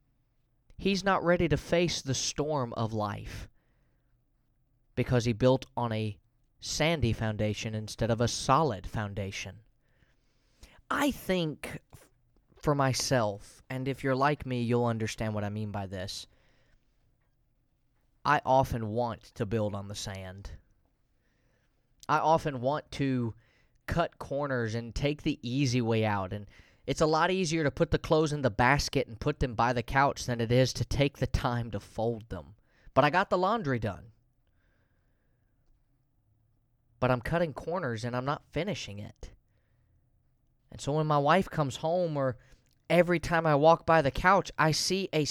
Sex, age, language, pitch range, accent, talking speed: male, 20-39, English, 115-145 Hz, American, 155 wpm